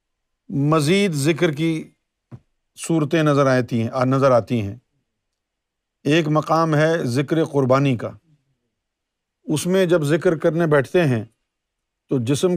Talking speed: 120 wpm